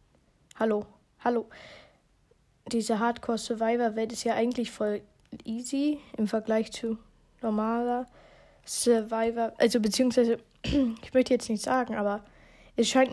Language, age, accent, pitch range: German, 20-39, German, 225-255 Hz